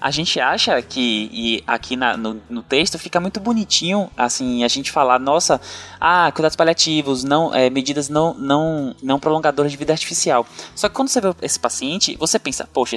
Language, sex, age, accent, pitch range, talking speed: Portuguese, male, 10-29, Brazilian, 125-175 Hz, 170 wpm